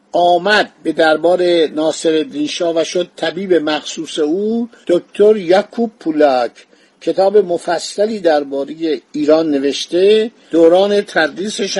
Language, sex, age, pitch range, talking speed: Persian, male, 50-69, 155-200 Hz, 100 wpm